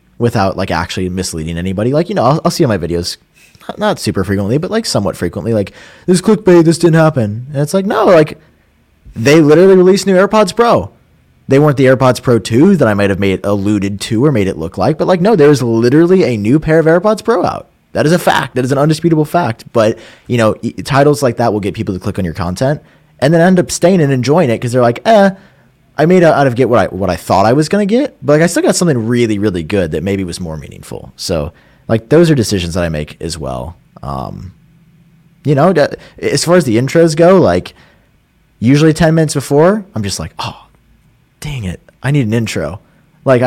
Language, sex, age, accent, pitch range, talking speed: English, male, 20-39, American, 105-165 Hz, 230 wpm